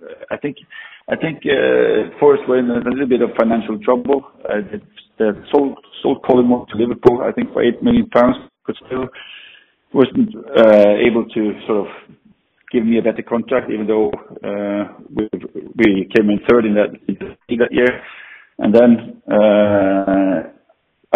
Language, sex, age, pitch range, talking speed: English, male, 50-69, 105-130 Hz, 155 wpm